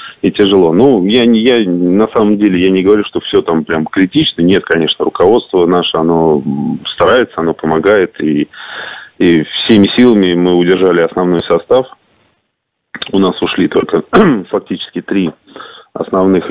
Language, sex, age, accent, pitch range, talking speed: Russian, male, 20-39, native, 80-100 Hz, 140 wpm